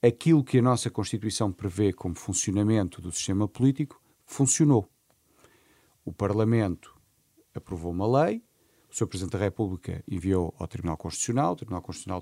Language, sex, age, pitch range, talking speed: Portuguese, male, 40-59, 100-140 Hz, 140 wpm